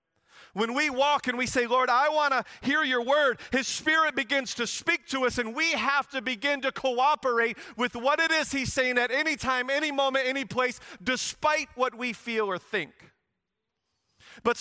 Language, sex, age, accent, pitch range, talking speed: English, male, 40-59, American, 215-270 Hz, 195 wpm